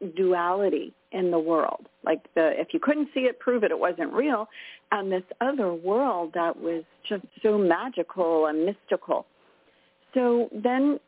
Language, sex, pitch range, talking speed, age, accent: English, female, 165-230 Hz, 155 wpm, 40-59, American